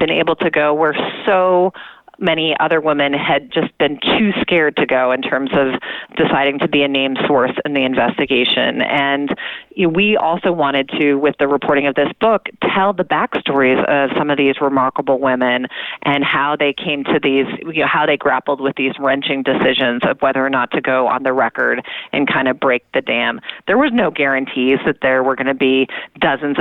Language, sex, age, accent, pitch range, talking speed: English, female, 30-49, American, 140-160 Hz, 205 wpm